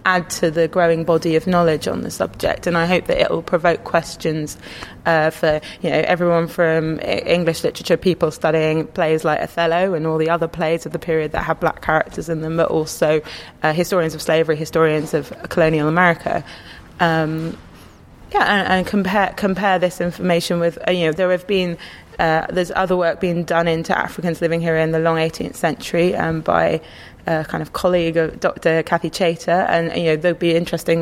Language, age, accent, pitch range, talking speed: English, 20-39, British, 160-180 Hz, 195 wpm